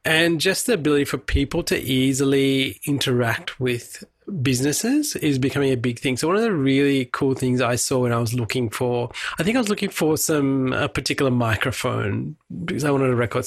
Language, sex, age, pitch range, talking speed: English, male, 30-49, 125-155 Hz, 200 wpm